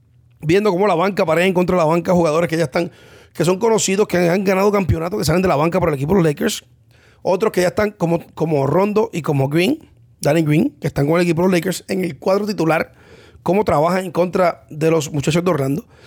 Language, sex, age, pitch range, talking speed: English, male, 30-49, 150-185 Hz, 245 wpm